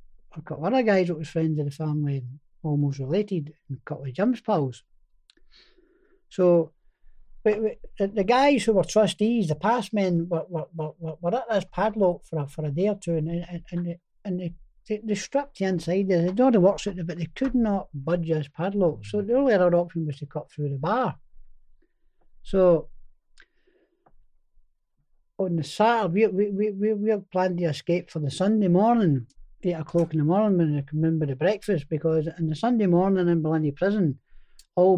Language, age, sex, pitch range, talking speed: English, 60-79, male, 150-205 Hz, 190 wpm